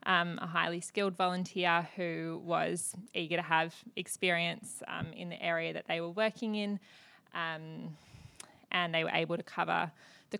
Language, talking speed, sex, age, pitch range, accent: English, 160 wpm, female, 20-39, 170-205 Hz, Australian